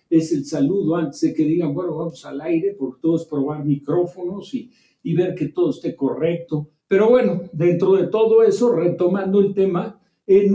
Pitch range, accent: 155-195 Hz, Mexican